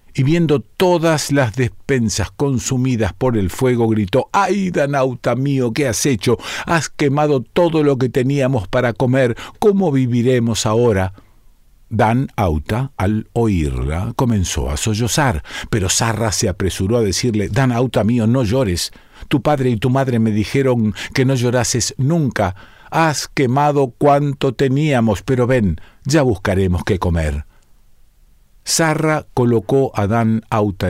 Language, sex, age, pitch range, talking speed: Spanish, male, 50-69, 100-135 Hz, 135 wpm